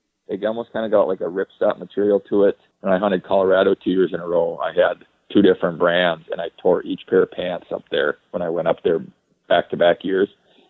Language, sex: English, male